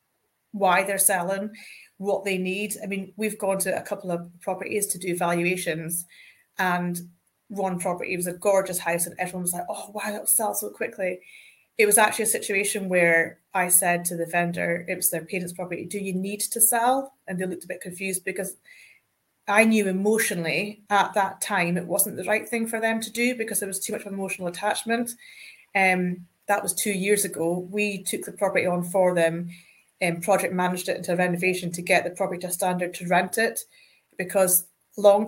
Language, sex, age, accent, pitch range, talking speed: English, female, 30-49, British, 175-200 Hz, 200 wpm